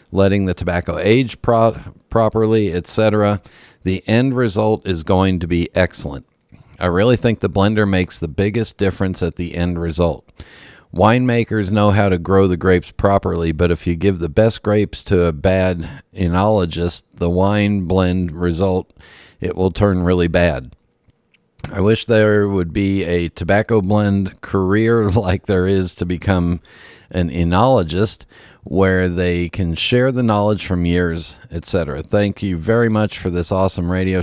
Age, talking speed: 40-59, 160 wpm